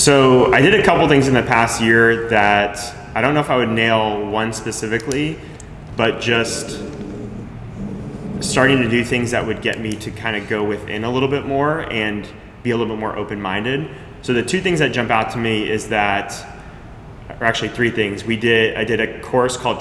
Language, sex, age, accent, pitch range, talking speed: English, male, 20-39, American, 105-120 Hz, 205 wpm